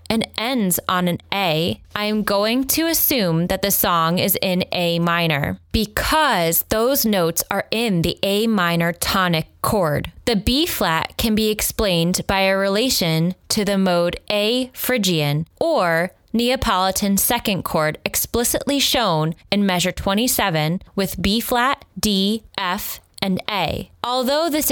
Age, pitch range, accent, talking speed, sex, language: 10-29, 175-240 Hz, American, 140 wpm, female, English